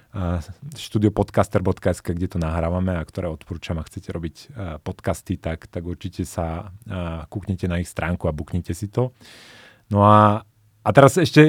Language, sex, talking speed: Slovak, male, 165 wpm